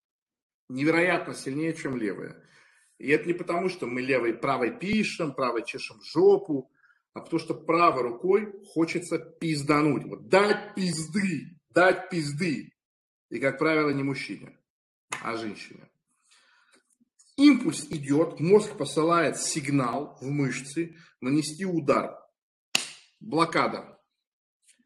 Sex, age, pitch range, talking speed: male, 40-59, 140-175 Hz, 110 wpm